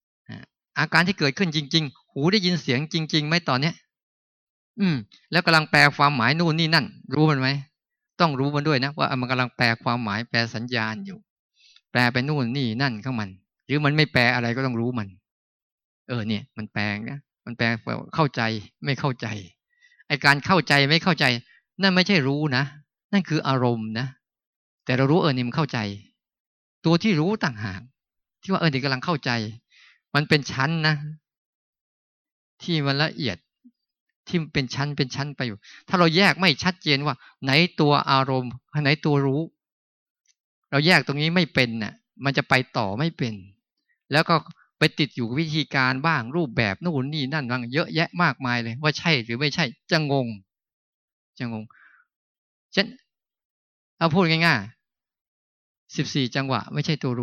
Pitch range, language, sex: 125-165 Hz, Thai, male